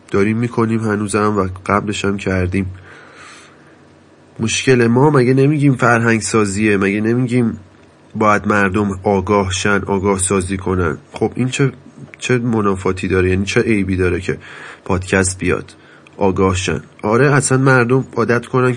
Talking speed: 135 wpm